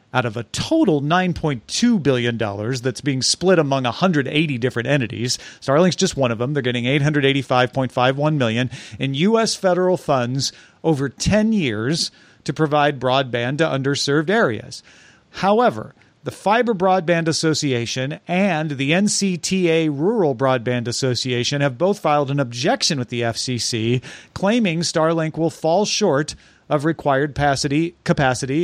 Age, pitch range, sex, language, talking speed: 40-59, 135-170 Hz, male, English, 130 wpm